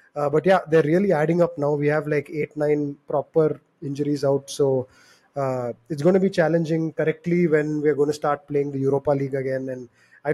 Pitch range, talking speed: 145-170 Hz, 210 wpm